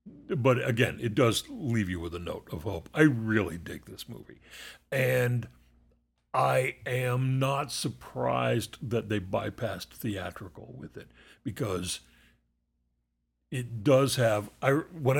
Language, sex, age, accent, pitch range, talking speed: English, male, 60-79, American, 75-125 Hz, 125 wpm